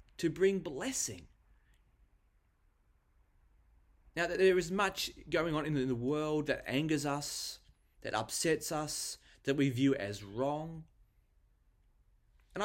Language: English